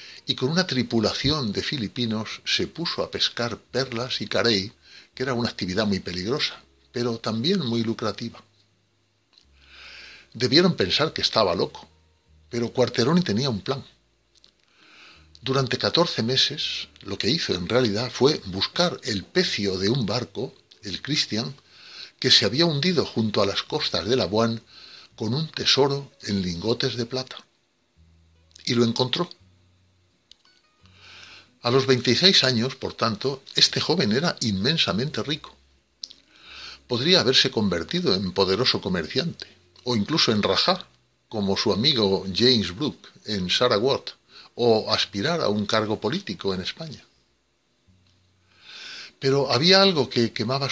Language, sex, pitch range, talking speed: Spanish, male, 95-130 Hz, 135 wpm